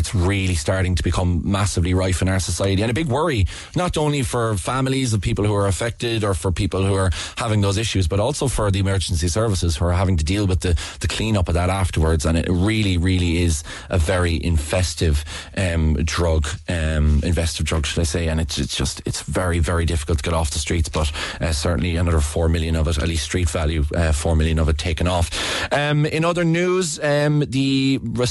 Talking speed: 220 wpm